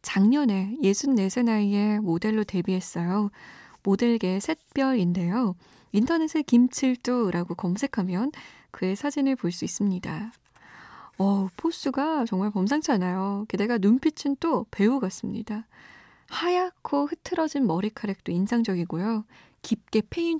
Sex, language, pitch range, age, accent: female, Korean, 190-260 Hz, 20-39, native